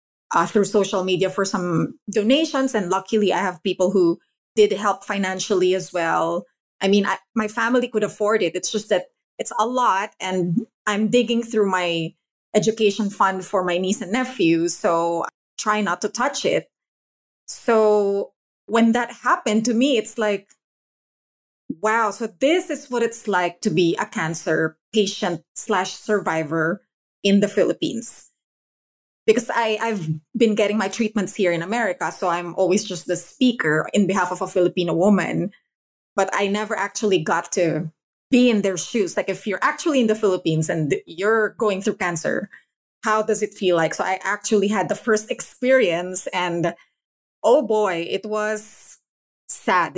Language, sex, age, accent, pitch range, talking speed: English, female, 20-39, Filipino, 180-220 Hz, 165 wpm